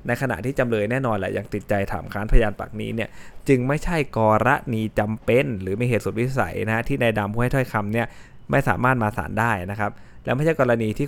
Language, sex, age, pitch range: Thai, male, 20-39, 105-125 Hz